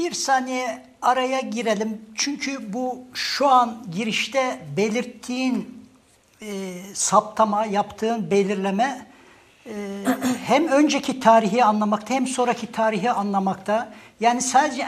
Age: 60-79